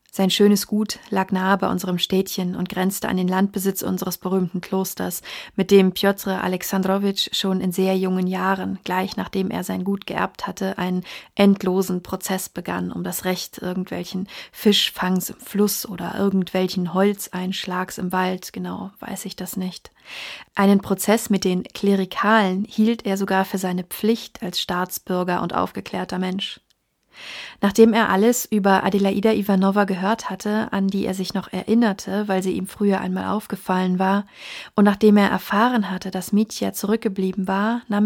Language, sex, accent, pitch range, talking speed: German, female, German, 185-210 Hz, 160 wpm